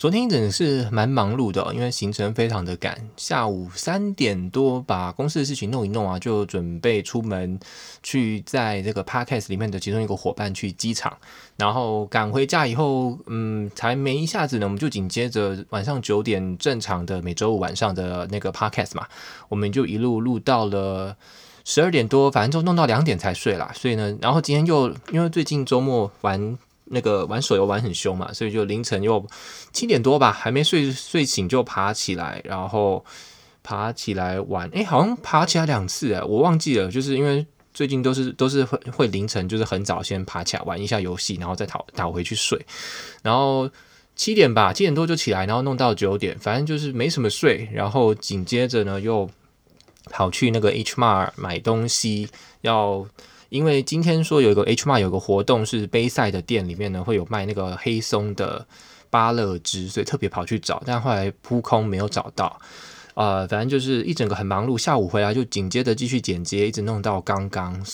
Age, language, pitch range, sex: 20-39, Chinese, 100-130 Hz, male